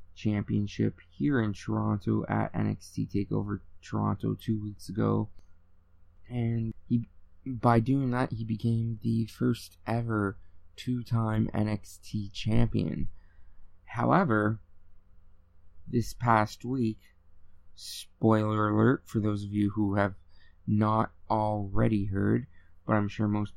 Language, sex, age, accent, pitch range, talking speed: English, male, 20-39, American, 90-110 Hz, 110 wpm